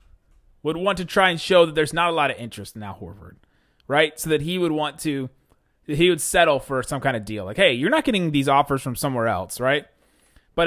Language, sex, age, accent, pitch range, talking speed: English, male, 30-49, American, 130-185 Hz, 240 wpm